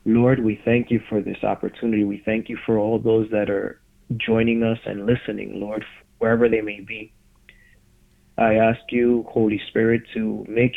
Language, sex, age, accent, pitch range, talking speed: English, male, 30-49, American, 105-115 Hz, 175 wpm